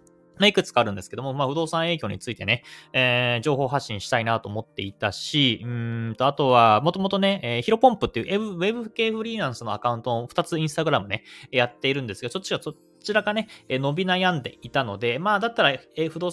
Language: Japanese